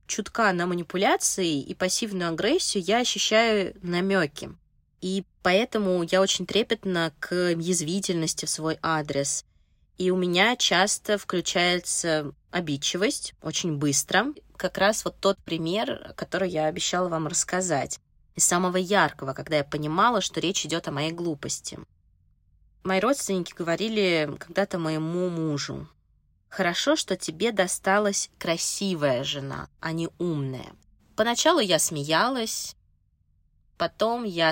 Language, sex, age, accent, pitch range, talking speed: Russian, female, 20-39, native, 155-190 Hz, 120 wpm